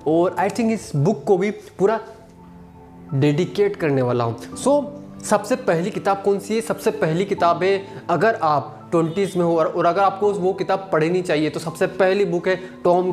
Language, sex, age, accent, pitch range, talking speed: Hindi, male, 20-39, native, 155-200 Hz, 190 wpm